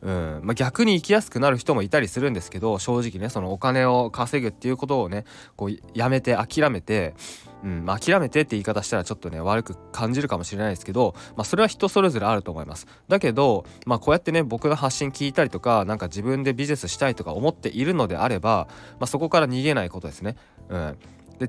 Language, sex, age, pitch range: Japanese, male, 20-39, 95-140 Hz